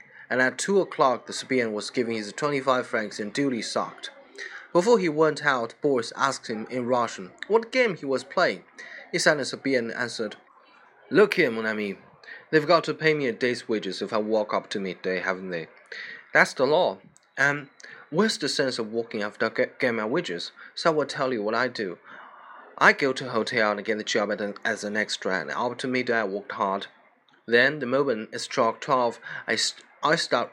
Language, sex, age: Chinese, male, 20-39